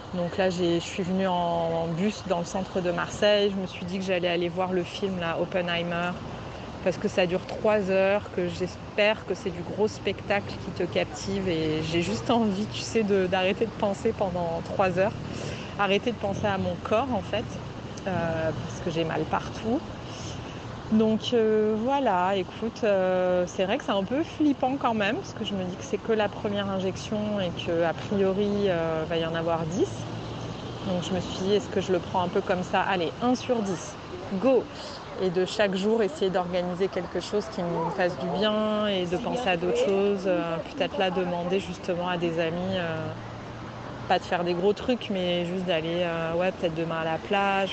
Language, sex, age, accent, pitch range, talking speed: French, female, 30-49, French, 175-205 Hz, 210 wpm